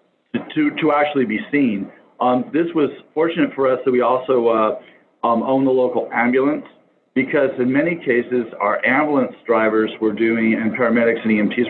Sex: male